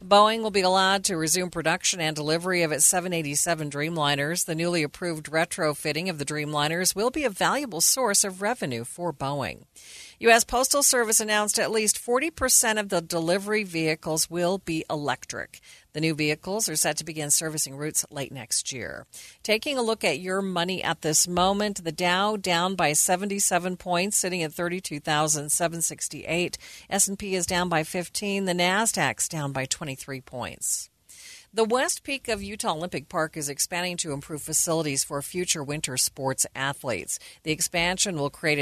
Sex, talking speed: female, 165 wpm